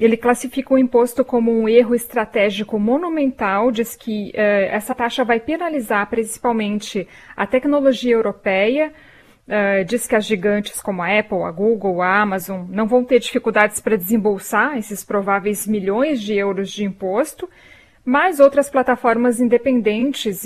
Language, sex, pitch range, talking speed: Portuguese, female, 200-250 Hz, 140 wpm